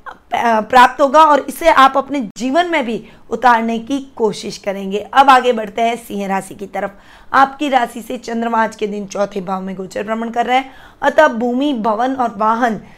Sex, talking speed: female, 190 wpm